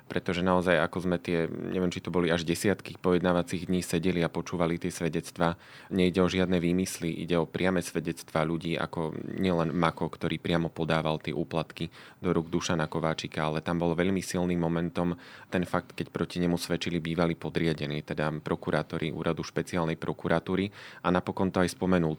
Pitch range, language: 80-90 Hz, Slovak